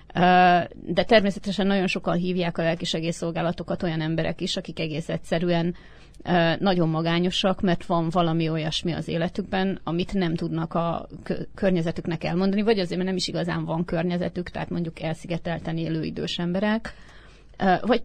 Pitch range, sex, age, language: 165-185 Hz, female, 30-49, Hungarian